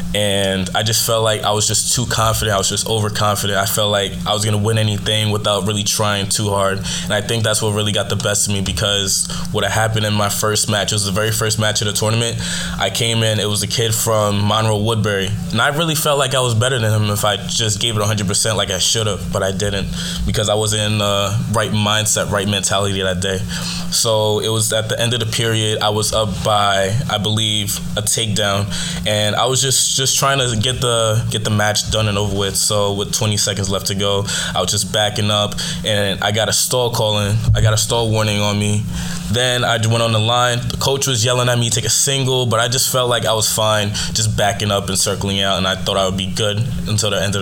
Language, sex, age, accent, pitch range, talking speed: English, male, 20-39, American, 100-115 Hz, 255 wpm